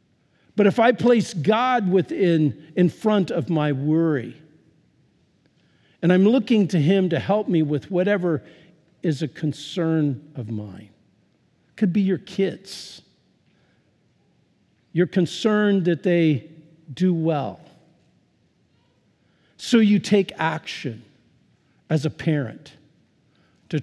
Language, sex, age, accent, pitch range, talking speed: English, male, 50-69, American, 145-185 Hz, 115 wpm